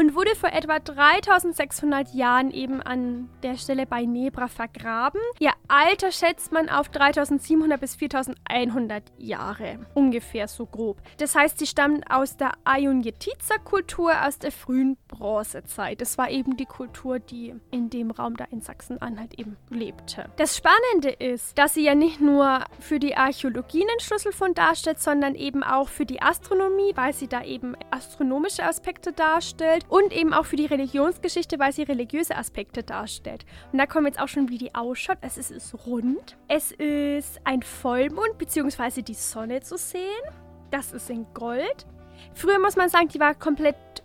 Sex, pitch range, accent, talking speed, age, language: female, 255-325 Hz, German, 170 wpm, 10-29, German